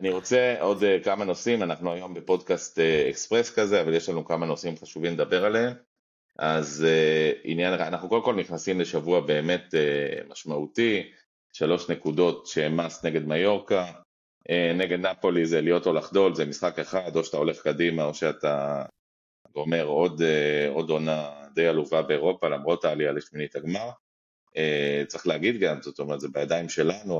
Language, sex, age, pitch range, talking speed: Hebrew, male, 30-49, 75-90 Hz, 150 wpm